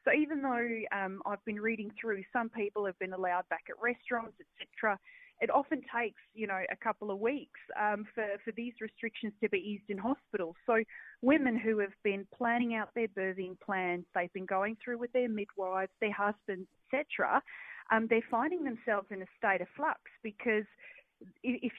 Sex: female